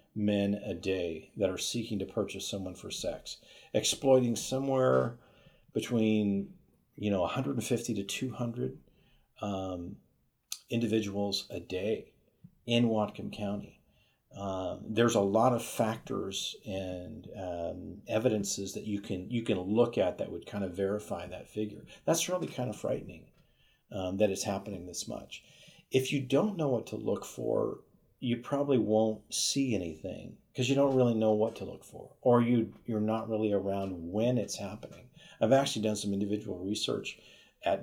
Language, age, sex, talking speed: English, 50-69, male, 155 wpm